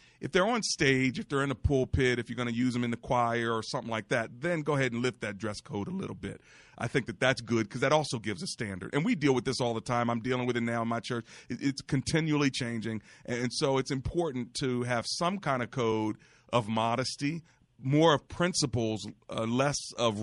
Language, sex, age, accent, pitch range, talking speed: English, male, 40-59, American, 115-130 Hz, 240 wpm